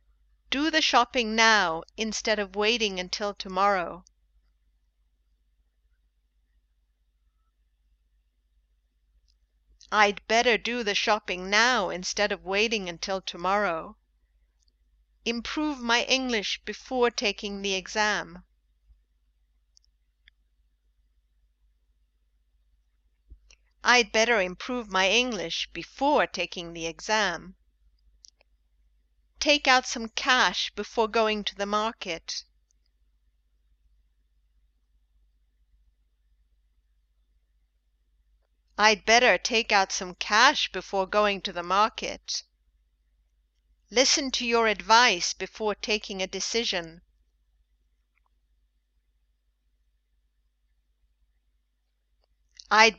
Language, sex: English, female